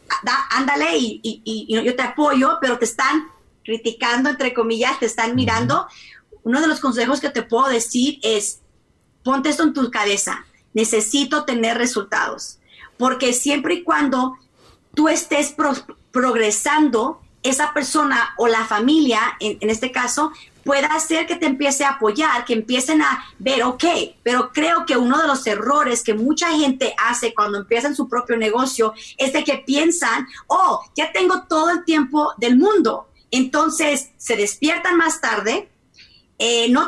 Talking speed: 160 wpm